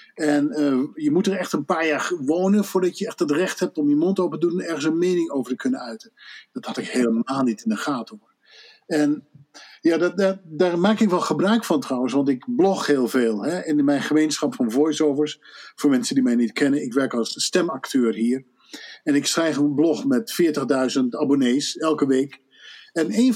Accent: Dutch